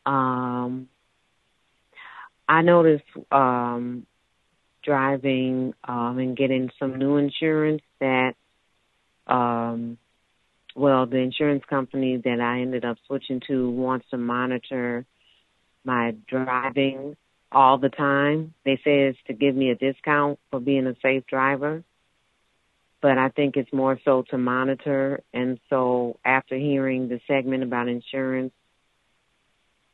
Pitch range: 125-140 Hz